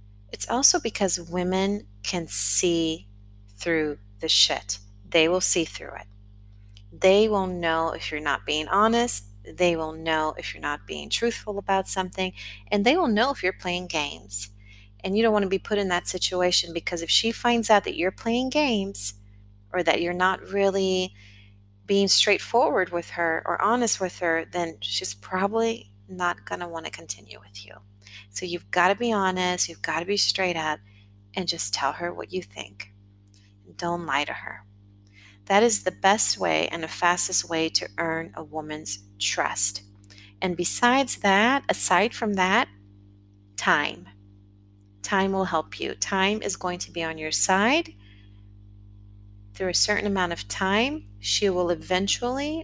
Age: 30-49